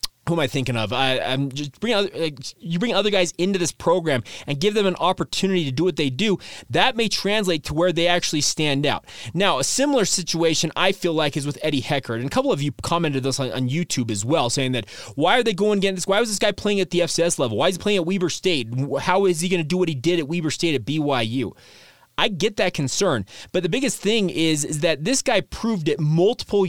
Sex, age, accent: male, 20-39, American